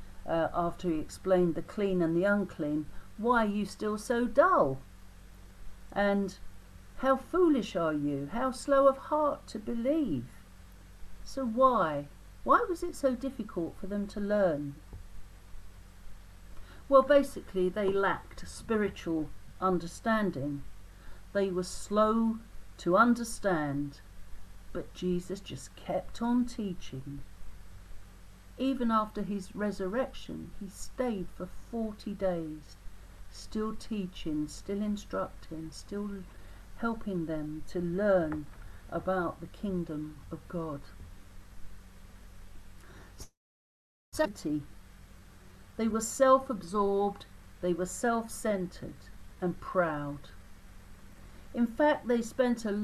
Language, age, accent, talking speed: English, 50-69, British, 100 wpm